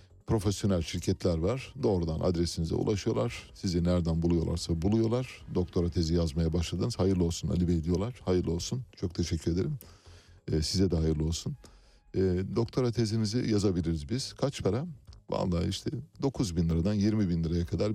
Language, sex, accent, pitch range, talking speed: Turkish, male, native, 85-105 Hz, 150 wpm